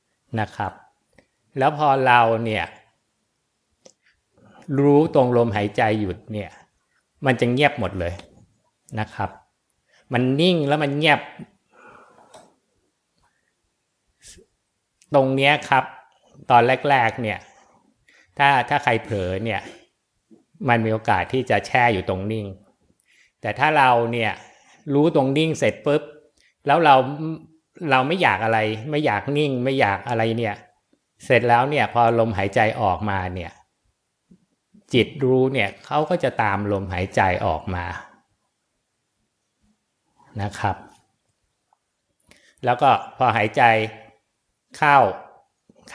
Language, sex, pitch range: Thai, male, 105-140 Hz